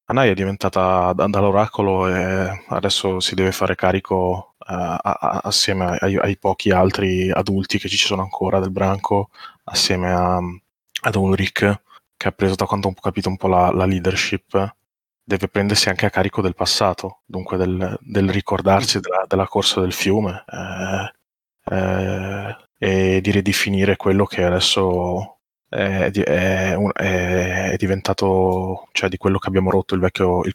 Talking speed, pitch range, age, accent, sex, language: 145 wpm, 90-100 Hz, 20-39, native, male, Italian